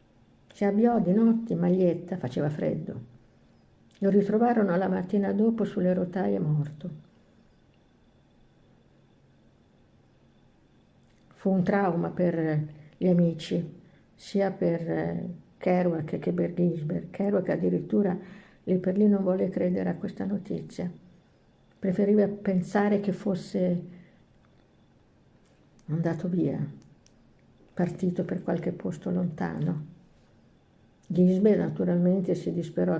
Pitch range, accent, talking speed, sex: 165-200 Hz, native, 95 wpm, female